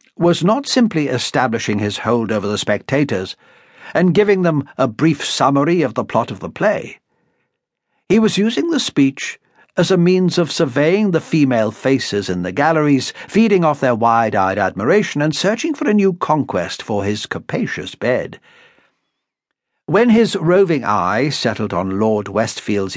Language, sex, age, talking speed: English, male, 60-79, 155 wpm